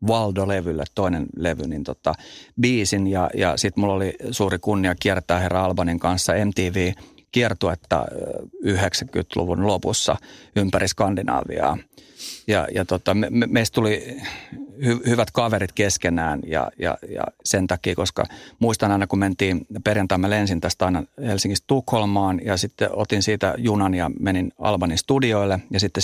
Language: Finnish